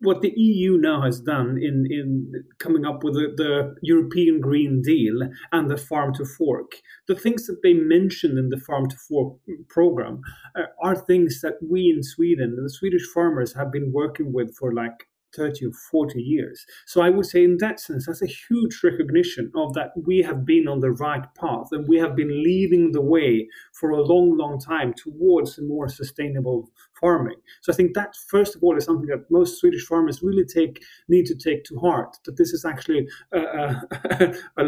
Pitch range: 140-185 Hz